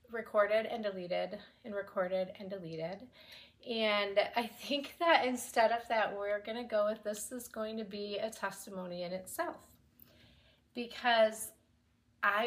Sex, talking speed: female, 140 wpm